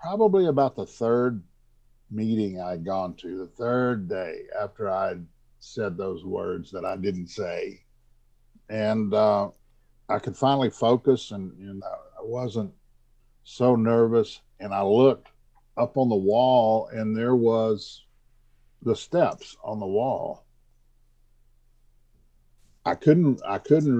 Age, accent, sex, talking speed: 50-69, American, male, 125 wpm